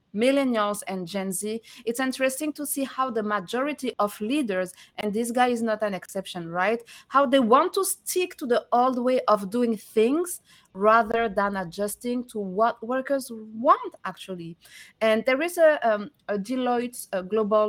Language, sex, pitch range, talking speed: English, female, 200-255 Hz, 170 wpm